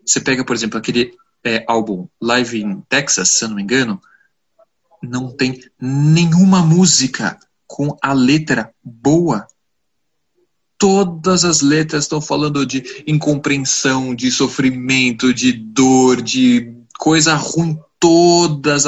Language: Portuguese